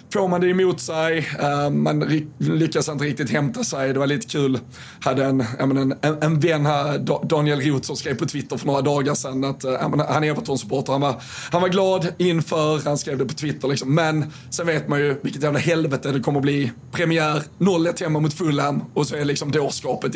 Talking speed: 205 wpm